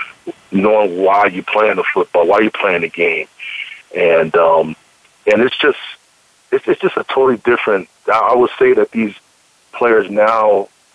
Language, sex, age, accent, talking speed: English, male, 50-69, American, 160 wpm